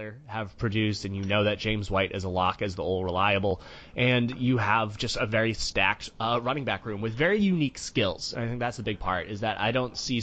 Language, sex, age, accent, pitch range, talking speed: English, male, 20-39, American, 95-120 Hz, 245 wpm